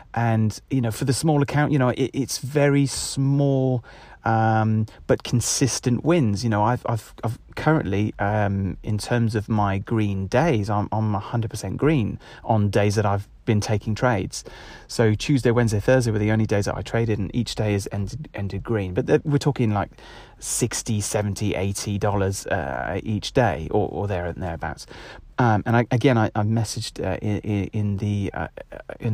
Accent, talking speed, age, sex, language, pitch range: British, 185 wpm, 30-49, male, English, 105-130 Hz